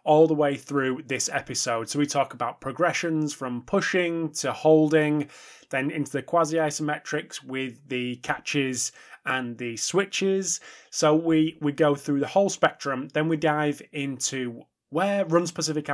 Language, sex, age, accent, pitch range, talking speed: English, male, 20-39, British, 130-175 Hz, 145 wpm